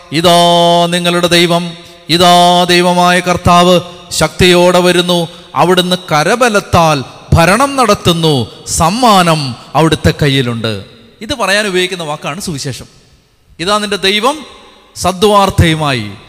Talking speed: 90 wpm